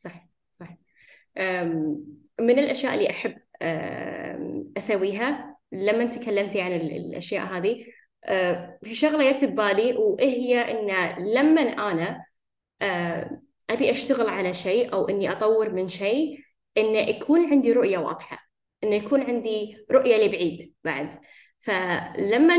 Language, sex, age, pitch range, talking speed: Arabic, female, 10-29, 185-260 Hz, 105 wpm